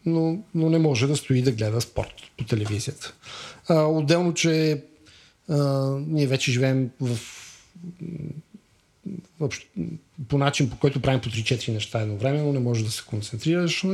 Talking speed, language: 150 wpm, Bulgarian